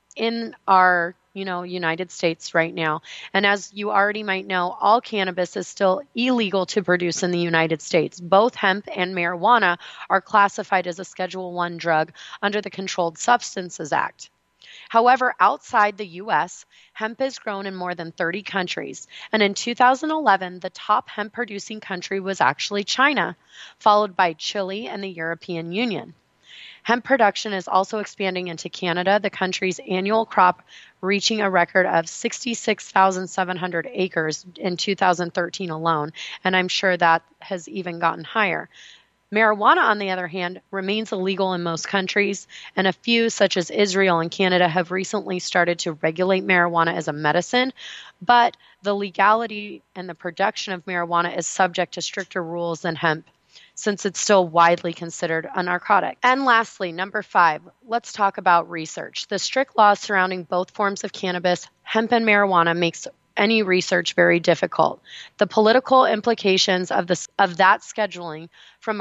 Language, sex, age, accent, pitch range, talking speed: English, female, 30-49, American, 175-210 Hz, 155 wpm